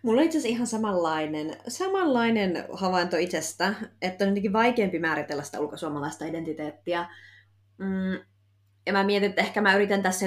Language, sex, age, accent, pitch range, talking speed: Finnish, female, 20-39, native, 160-210 Hz, 150 wpm